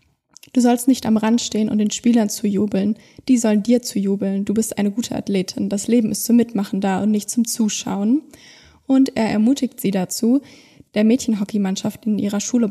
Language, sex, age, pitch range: German, female, 20-39, 200-240 Hz